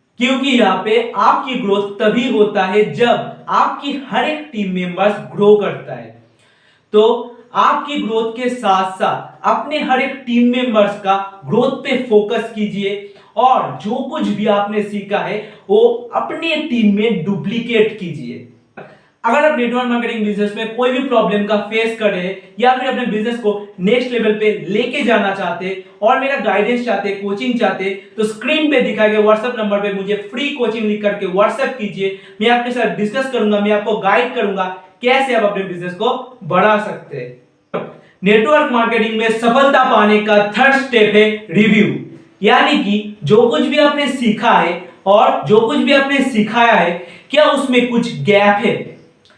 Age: 50-69